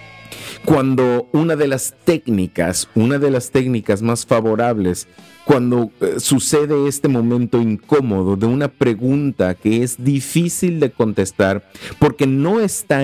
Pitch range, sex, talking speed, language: 110-145 Hz, male, 130 wpm, English